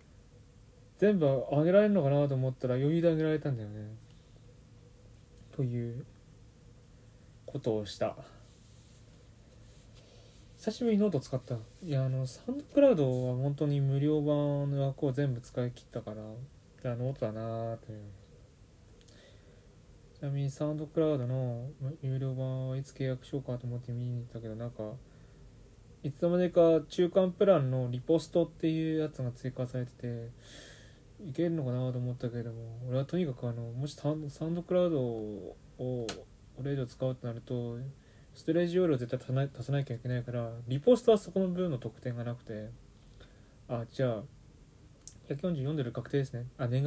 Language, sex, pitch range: Japanese, male, 120-145 Hz